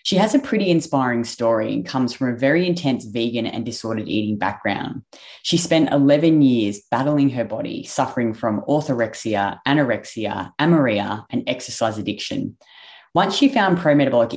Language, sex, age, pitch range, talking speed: English, female, 20-39, 115-155 Hz, 150 wpm